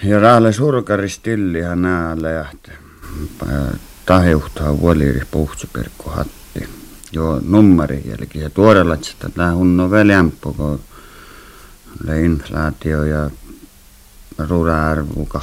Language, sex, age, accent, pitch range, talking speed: Finnish, male, 60-79, native, 70-90 Hz, 80 wpm